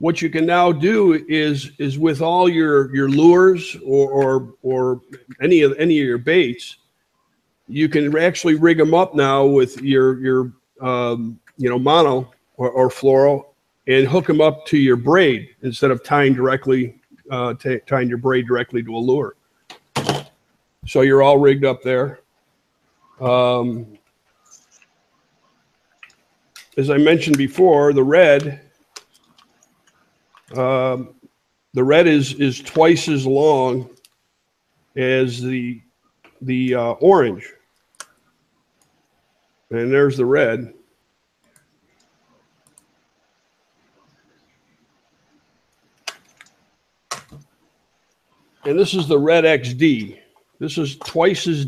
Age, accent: 50-69, American